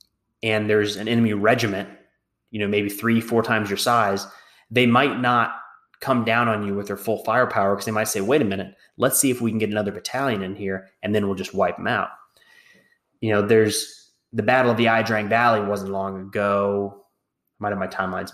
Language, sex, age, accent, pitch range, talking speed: English, male, 20-39, American, 100-120 Hz, 215 wpm